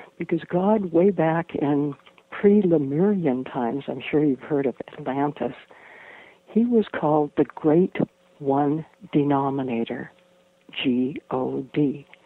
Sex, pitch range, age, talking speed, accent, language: female, 135-175 Hz, 60-79, 105 wpm, American, English